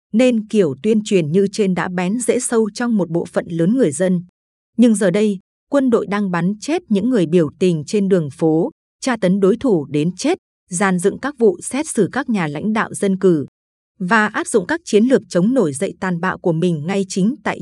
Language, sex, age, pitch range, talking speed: Vietnamese, female, 20-39, 180-225 Hz, 225 wpm